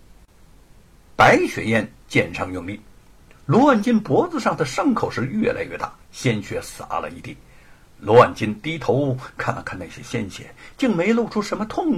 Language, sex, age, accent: Chinese, male, 60-79, native